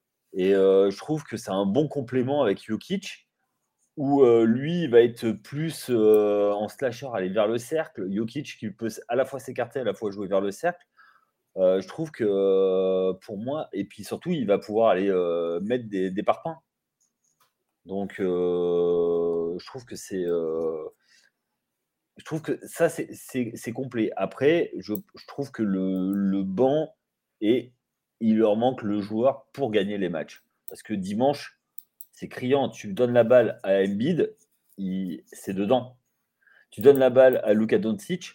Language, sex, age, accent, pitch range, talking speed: French, male, 30-49, French, 95-140 Hz, 170 wpm